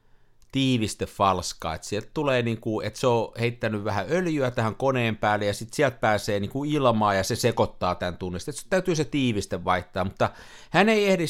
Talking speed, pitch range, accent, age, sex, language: 175 wpm, 105-150 Hz, native, 50-69, male, Finnish